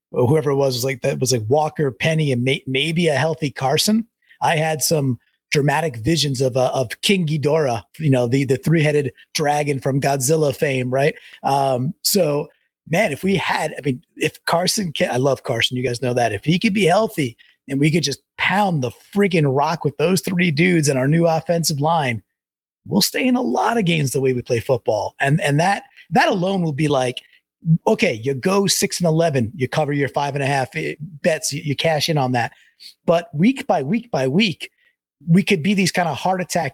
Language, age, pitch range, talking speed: English, 30-49, 135-180 Hz, 215 wpm